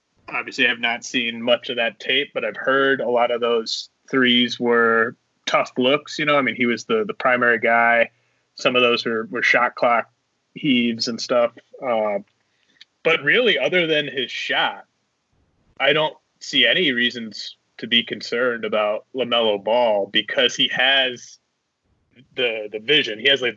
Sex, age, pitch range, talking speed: male, 30-49, 115-135 Hz, 170 wpm